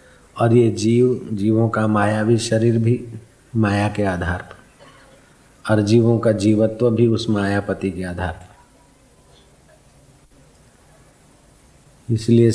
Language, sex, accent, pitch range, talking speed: Hindi, male, native, 105-115 Hz, 110 wpm